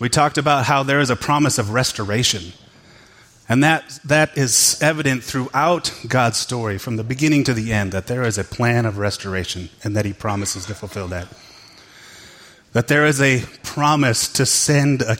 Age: 30-49